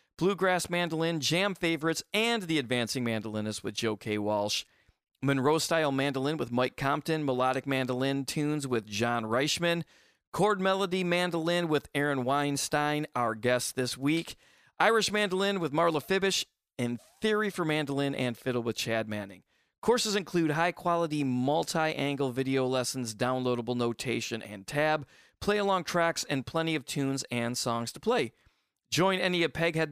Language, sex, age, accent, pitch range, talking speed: English, male, 40-59, American, 120-165 Hz, 145 wpm